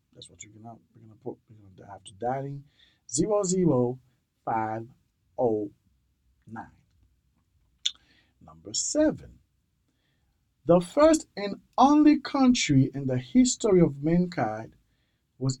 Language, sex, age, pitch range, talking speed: English, male, 50-69, 120-175 Hz, 110 wpm